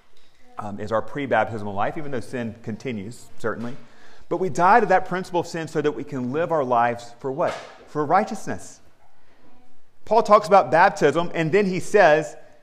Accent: American